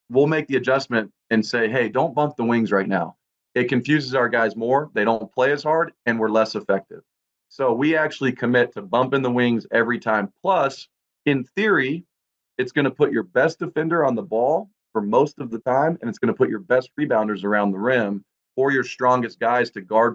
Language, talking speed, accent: English, 215 wpm, American